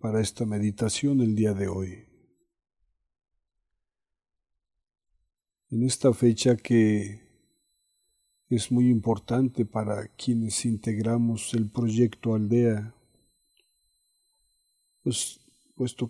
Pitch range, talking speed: 110-125 Hz, 80 wpm